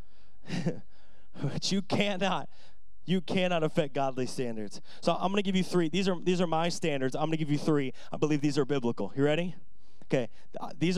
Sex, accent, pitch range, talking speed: male, American, 150-205 Hz, 195 wpm